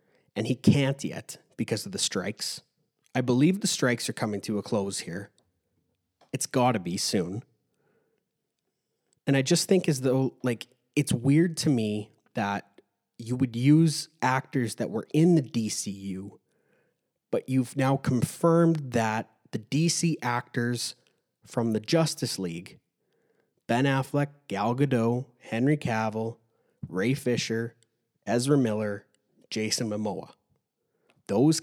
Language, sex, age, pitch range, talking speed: English, male, 30-49, 115-155 Hz, 130 wpm